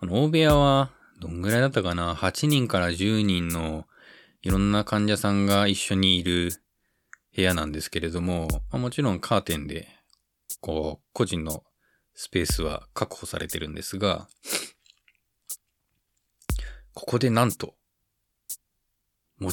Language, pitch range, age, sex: Japanese, 80-105 Hz, 20-39, male